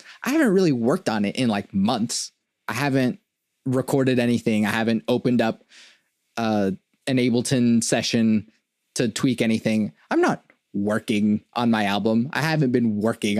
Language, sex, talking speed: English, male, 150 wpm